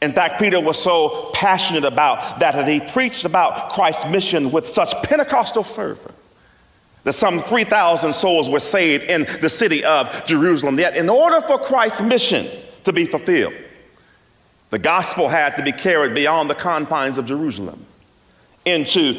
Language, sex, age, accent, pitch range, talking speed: English, male, 40-59, American, 140-235 Hz, 155 wpm